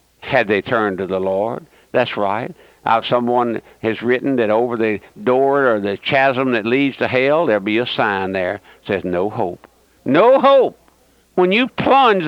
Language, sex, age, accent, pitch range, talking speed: English, male, 60-79, American, 115-180 Hz, 180 wpm